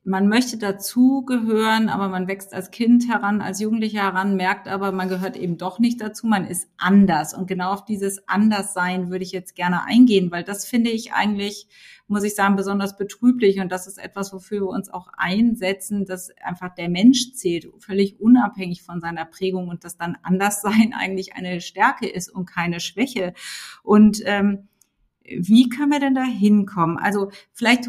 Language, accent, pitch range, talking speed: German, German, 190-240 Hz, 180 wpm